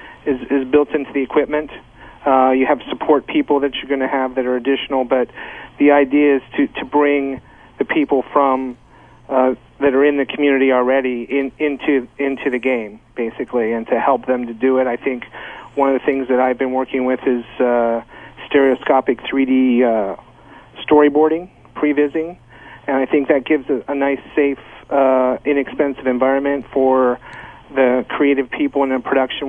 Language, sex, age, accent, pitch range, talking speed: English, male, 40-59, American, 125-140 Hz, 175 wpm